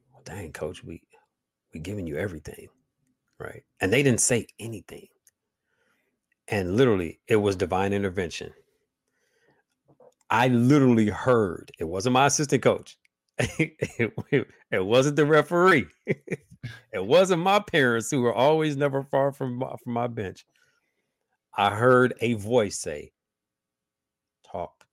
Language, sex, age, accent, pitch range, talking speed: English, male, 50-69, American, 95-145 Hz, 125 wpm